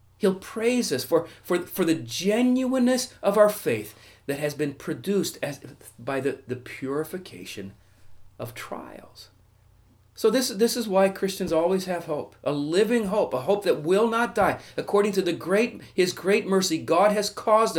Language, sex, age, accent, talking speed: English, male, 40-59, American, 170 wpm